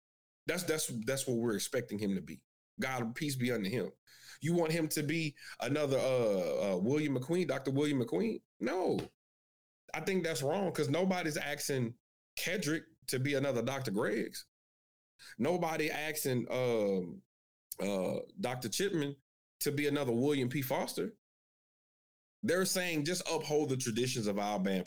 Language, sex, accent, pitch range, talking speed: English, male, American, 115-160 Hz, 150 wpm